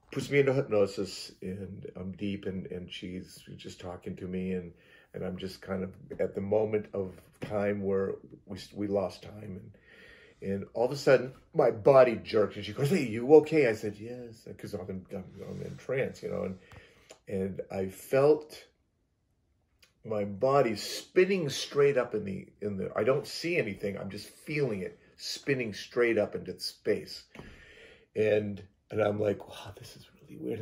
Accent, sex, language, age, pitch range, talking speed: American, male, English, 40-59, 100-130 Hz, 180 wpm